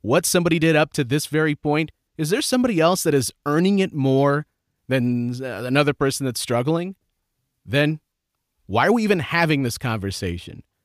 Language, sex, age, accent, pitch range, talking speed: English, male, 30-49, American, 125-170 Hz, 165 wpm